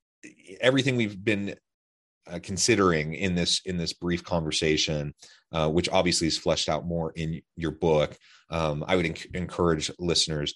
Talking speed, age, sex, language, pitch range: 155 wpm, 30-49, male, English, 80-95 Hz